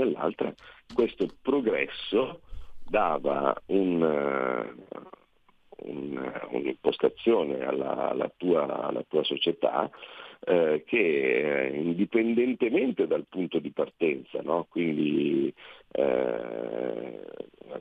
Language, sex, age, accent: Italian, male, 50-69, native